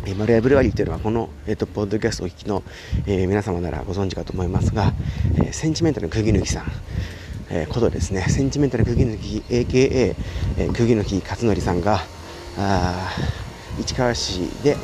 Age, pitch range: 40-59, 90-120 Hz